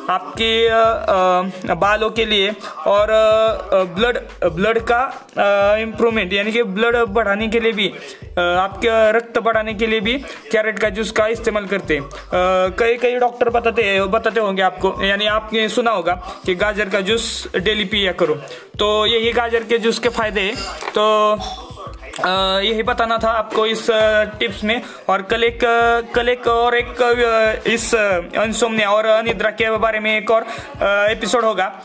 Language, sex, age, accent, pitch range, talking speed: Hindi, male, 20-39, native, 205-230 Hz, 155 wpm